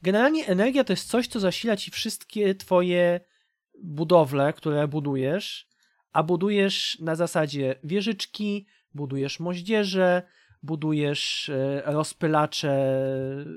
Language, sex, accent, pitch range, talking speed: Polish, male, native, 160-220 Hz, 95 wpm